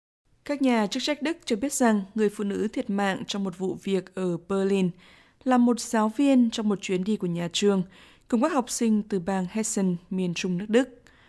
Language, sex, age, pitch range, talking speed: Vietnamese, female, 20-39, 190-235 Hz, 220 wpm